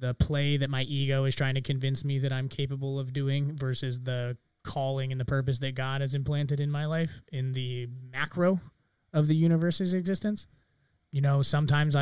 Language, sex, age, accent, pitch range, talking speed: English, male, 20-39, American, 125-145 Hz, 190 wpm